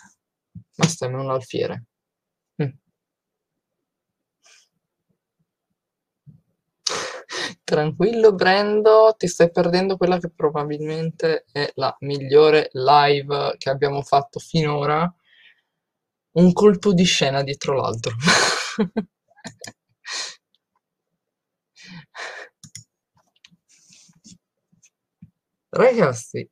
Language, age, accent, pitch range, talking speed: Italian, 20-39, native, 150-210 Hz, 65 wpm